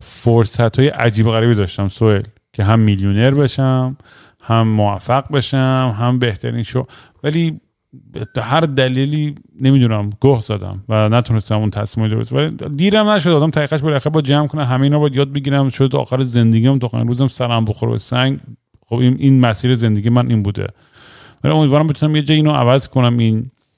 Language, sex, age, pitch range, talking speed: Persian, male, 40-59, 110-135 Hz, 175 wpm